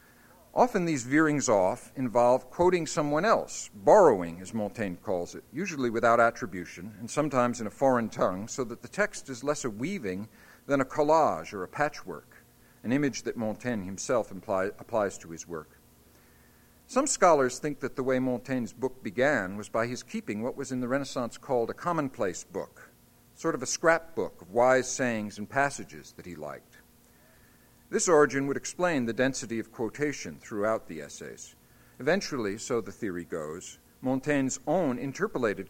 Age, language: 50-69, English